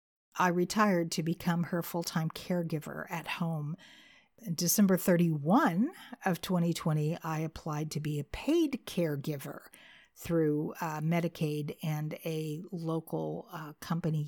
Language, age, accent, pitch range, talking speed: English, 50-69, American, 165-210 Hz, 120 wpm